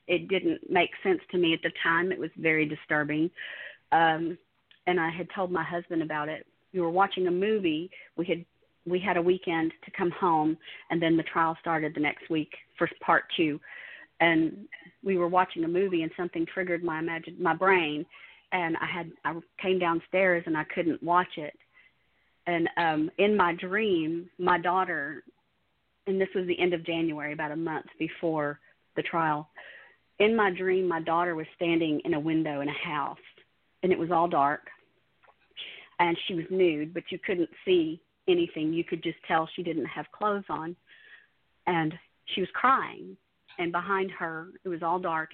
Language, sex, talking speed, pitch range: English, female, 185 wpm, 160-185 Hz